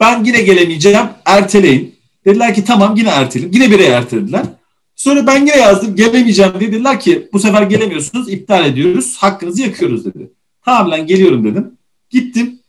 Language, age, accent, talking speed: Turkish, 40-59, native, 155 wpm